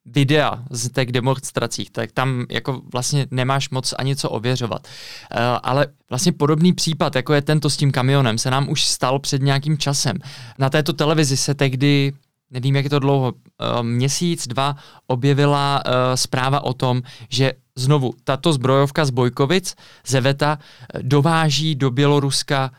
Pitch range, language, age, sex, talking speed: 135-160 Hz, Czech, 20-39, male, 145 wpm